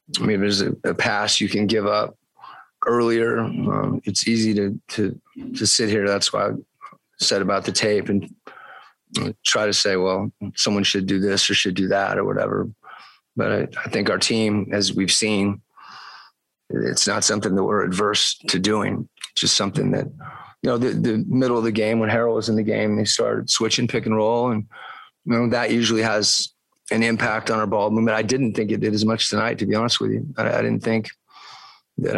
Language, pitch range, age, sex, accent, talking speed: English, 105-115 Hz, 30-49, male, American, 205 wpm